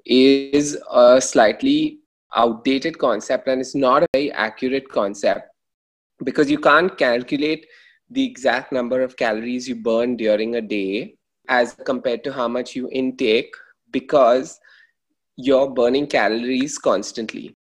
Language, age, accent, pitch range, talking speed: English, 20-39, Indian, 120-155 Hz, 130 wpm